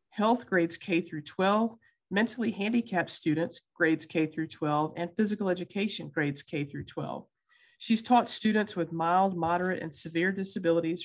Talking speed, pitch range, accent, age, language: 150 wpm, 165-205 Hz, American, 50-69, English